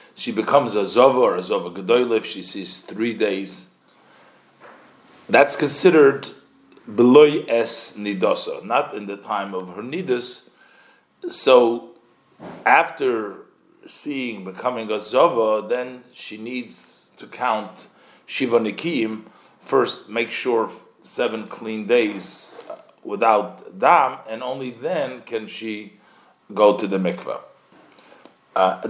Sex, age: male, 40-59